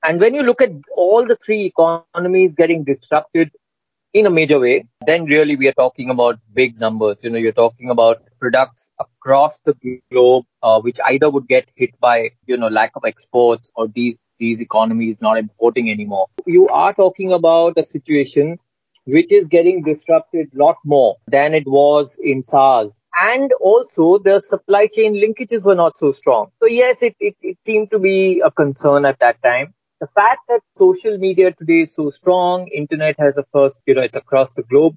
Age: 30-49